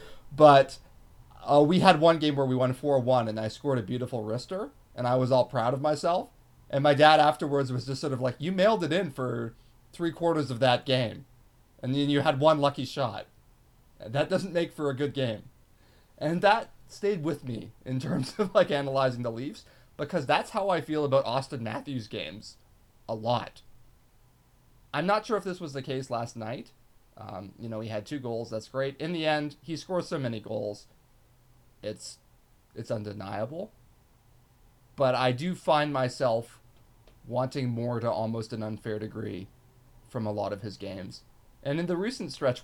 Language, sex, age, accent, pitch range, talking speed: English, male, 30-49, American, 115-150 Hz, 185 wpm